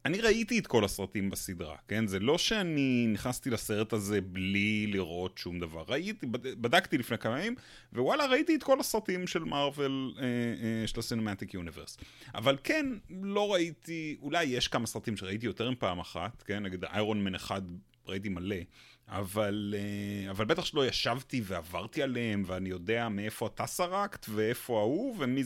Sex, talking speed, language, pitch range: male, 165 wpm, Hebrew, 100-130 Hz